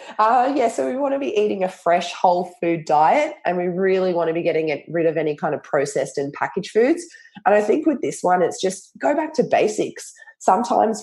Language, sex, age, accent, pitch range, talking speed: English, female, 20-39, Australian, 155-200 Hz, 230 wpm